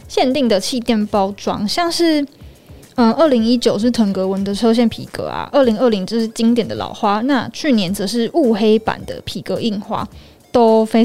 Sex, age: female, 10-29